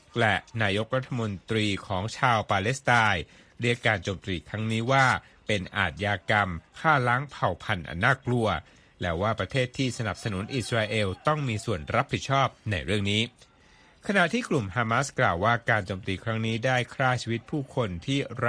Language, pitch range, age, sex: Thai, 100-125 Hz, 60-79, male